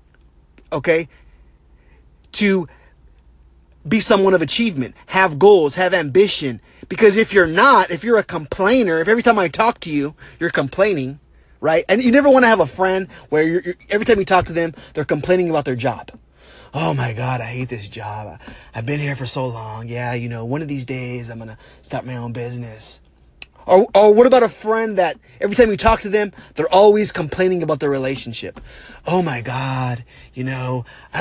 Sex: male